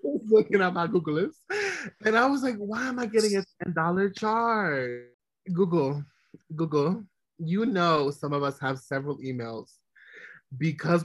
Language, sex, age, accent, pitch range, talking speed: English, male, 20-39, American, 140-200 Hz, 150 wpm